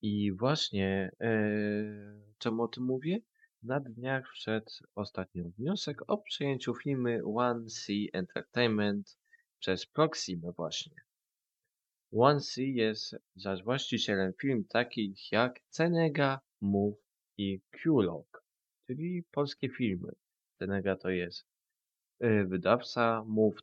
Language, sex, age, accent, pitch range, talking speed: Polish, male, 20-39, native, 100-125 Hz, 105 wpm